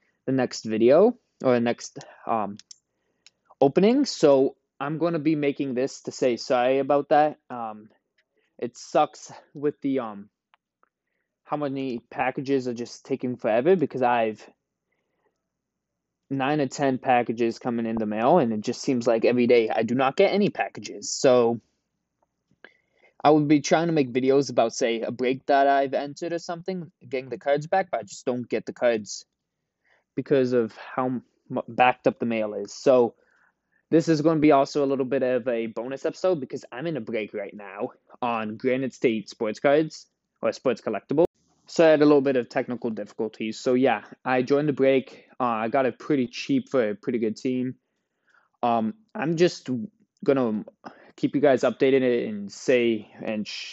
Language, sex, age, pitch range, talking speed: English, male, 20-39, 120-150 Hz, 180 wpm